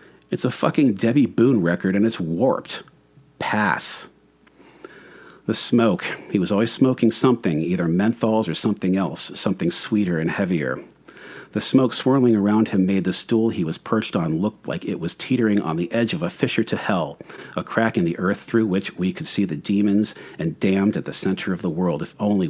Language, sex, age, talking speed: English, male, 40-59, 195 wpm